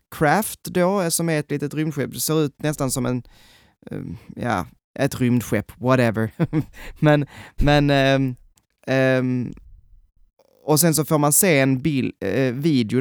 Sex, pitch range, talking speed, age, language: male, 120-145 Hz, 125 wpm, 20-39, Swedish